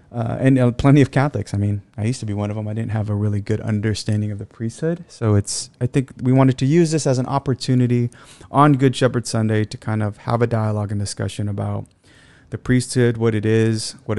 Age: 30-49